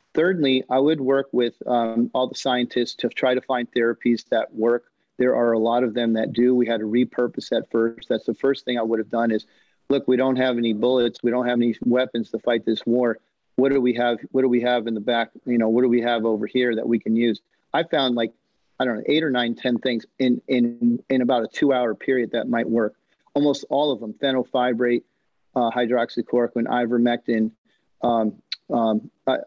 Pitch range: 115-130 Hz